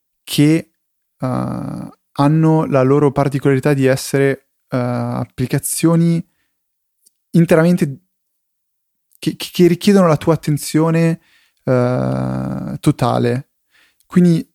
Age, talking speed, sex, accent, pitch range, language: 20-39, 70 wpm, male, native, 120-150 Hz, Italian